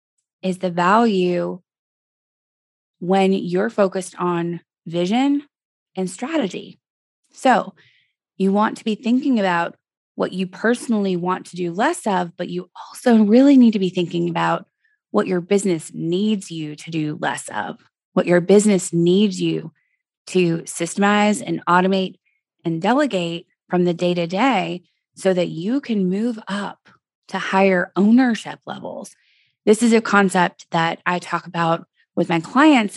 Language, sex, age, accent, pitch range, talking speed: English, female, 20-39, American, 175-215 Hz, 140 wpm